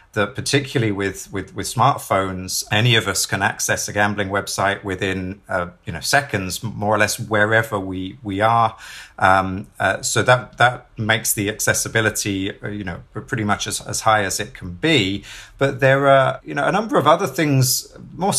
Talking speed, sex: 185 wpm, male